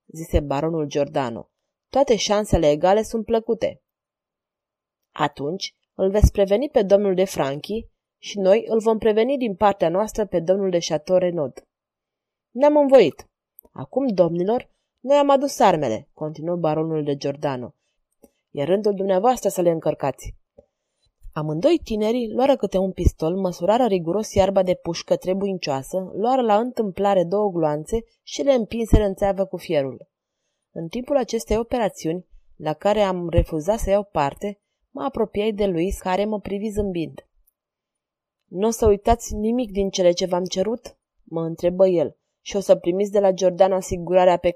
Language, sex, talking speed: Romanian, female, 150 wpm